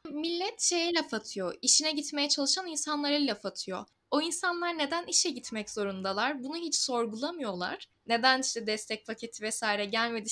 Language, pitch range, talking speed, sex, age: Turkish, 240-315 Hz, 145 wpm, female, 10-29